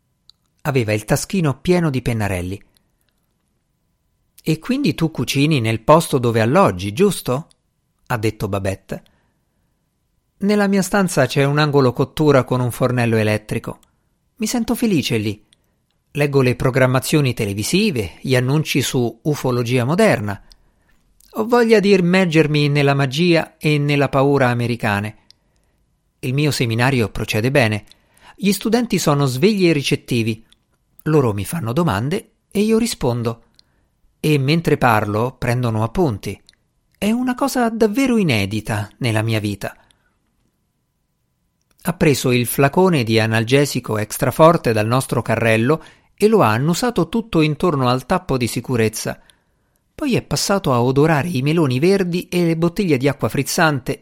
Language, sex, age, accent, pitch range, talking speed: Italian, male, 50-69, native, 115-160 Hz, 130 wpm